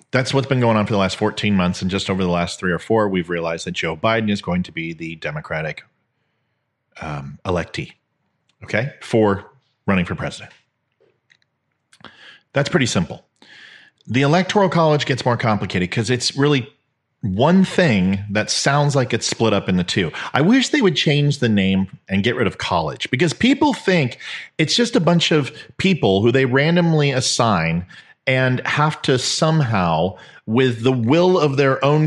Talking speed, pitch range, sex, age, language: 175 wpm, 105-150 Hz, male, 40-59, English